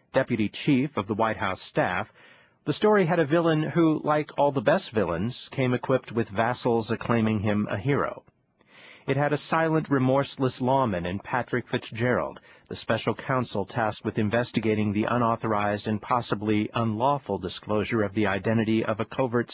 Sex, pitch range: male, 110-135 Hz